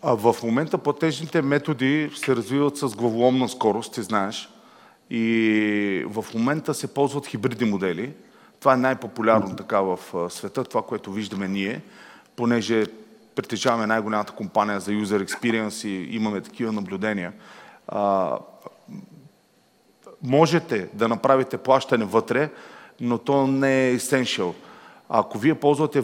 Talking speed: 130 wpm